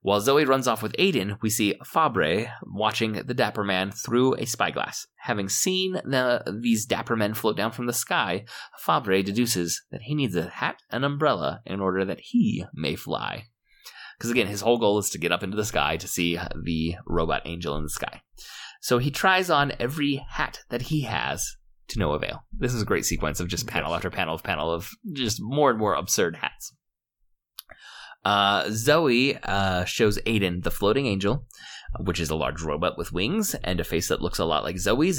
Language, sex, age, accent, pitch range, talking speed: English, male, 20-39, American, 90-120 Hz, 200 wpm